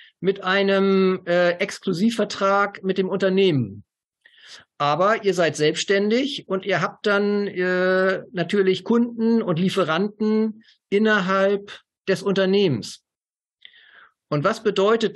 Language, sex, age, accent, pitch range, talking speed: German, male, 50-69, German, 160-200 Hz, 105 wpm